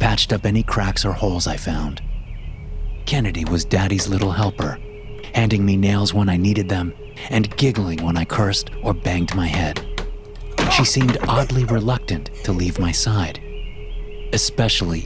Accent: American